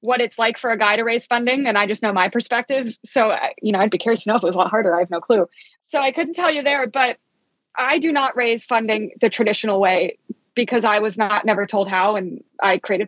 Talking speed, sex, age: 265 wpm, female, 20-39